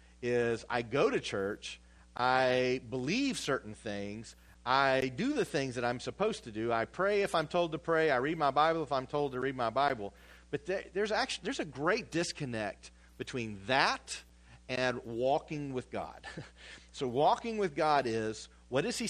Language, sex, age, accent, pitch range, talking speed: English, male, 40-59, American, 105-155 Hz, 180 wpm